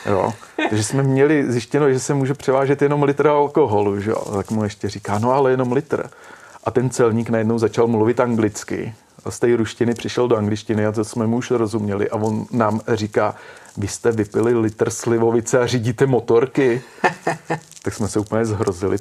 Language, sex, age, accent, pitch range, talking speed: Czech, male, 40-59, native, 110-135 Hz, 185 wpm